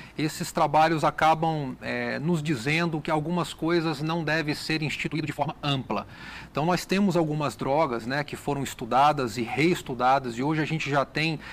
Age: 40-59